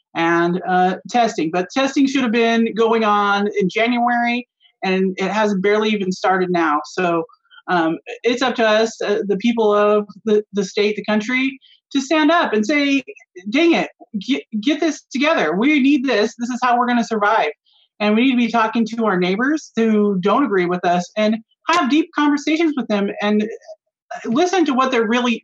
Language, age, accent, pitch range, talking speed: English, 30-49, American, 205-265 Hz, 190 wpm